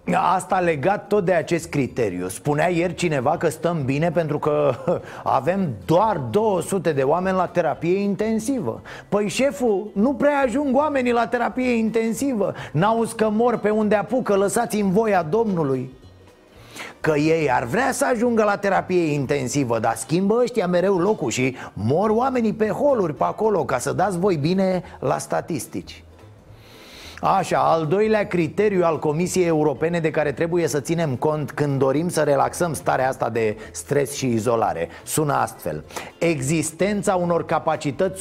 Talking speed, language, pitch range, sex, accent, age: 150 wpm, Romanian, 145-205 Hz, male, native, 30-49